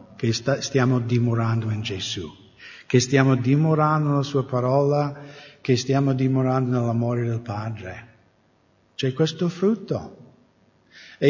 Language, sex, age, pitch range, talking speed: English, male, 60-79, 130-185 Hz, 110 wpm